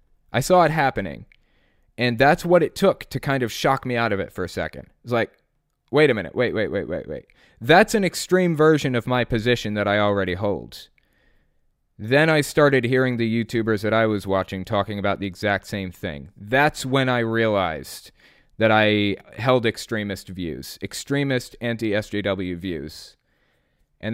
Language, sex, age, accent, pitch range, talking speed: English, male, 20-39, American, 100-135 Hz, 175 wpm